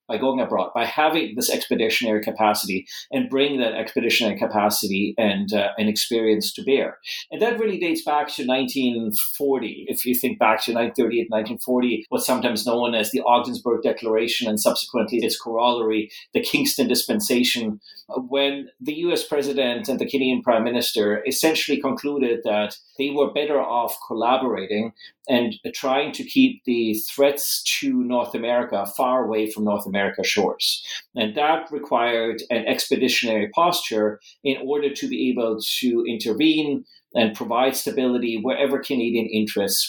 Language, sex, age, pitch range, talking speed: English, male, 30-49, 110-145 Hz, 145 wpm